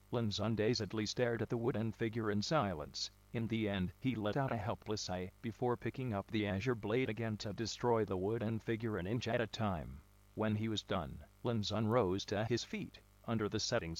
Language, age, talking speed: English, 50-69, 200 wpm